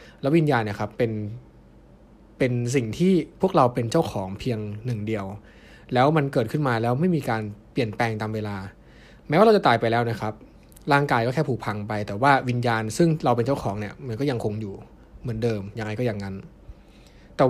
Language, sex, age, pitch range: Thai, male, 20-39, 105-140 Hz